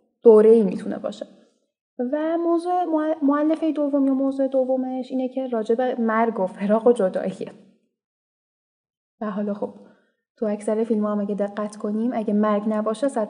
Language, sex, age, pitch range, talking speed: Persian, female, 10-29, 205-255 Hz, 155 wpm